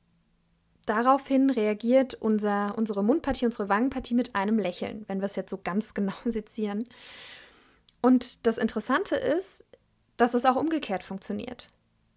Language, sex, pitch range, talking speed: German, female, 225-270 Hz, 130 wpm